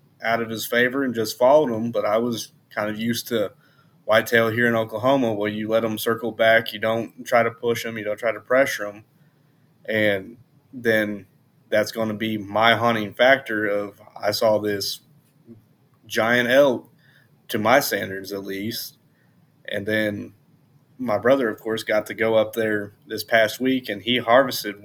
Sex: male